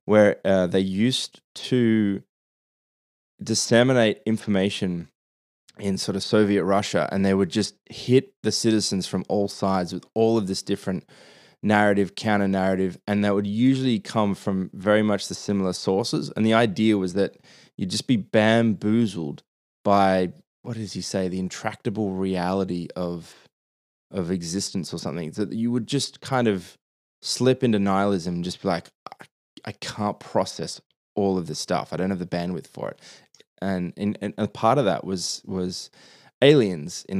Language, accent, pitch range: English, Australian, 95-110 Hz